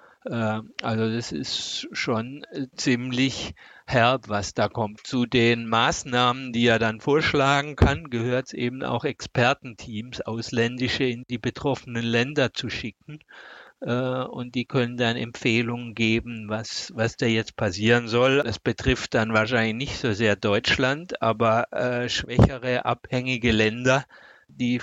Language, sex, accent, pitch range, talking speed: German, male, German, 115-130 Hz, 130 wpm